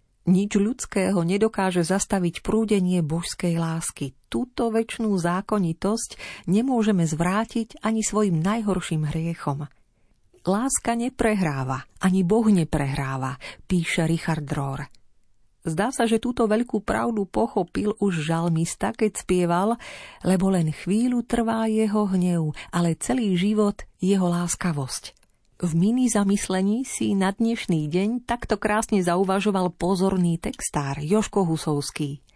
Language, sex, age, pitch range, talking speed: Slovak, female, 40-59, 170-220 Hz, 110 wpm